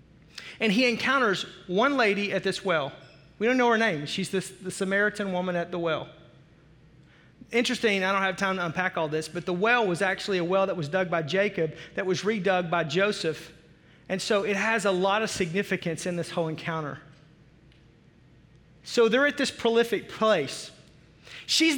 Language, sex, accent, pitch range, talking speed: English, male, American, 180-235 Hz, 180 wpm